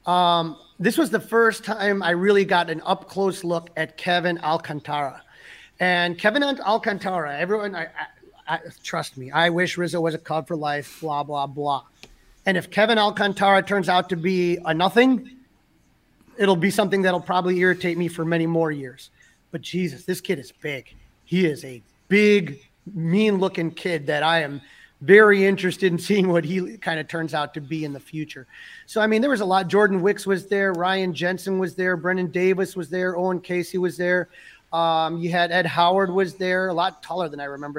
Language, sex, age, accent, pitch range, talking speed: English, male, 30-49, American, 160-195 Hz, 195 wpm